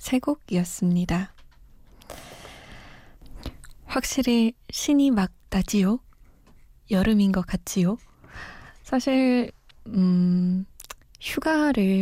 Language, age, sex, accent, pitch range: Korean, 20-39, female, native, 190-255 Hz